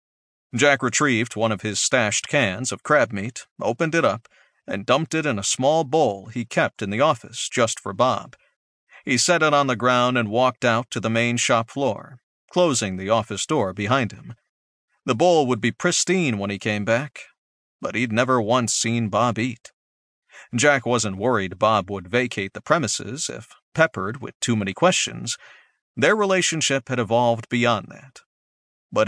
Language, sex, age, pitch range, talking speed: English, male, 40-59, 105-150 Hz, 175 wpm